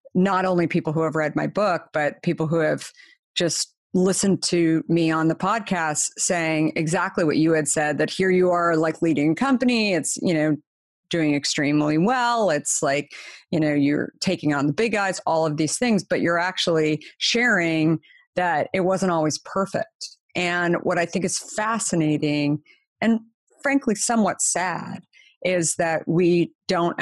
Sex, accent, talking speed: female, American, 170 wpm